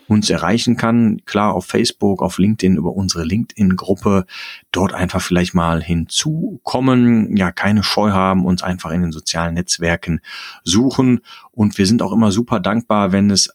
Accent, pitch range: German, 90-110 Hz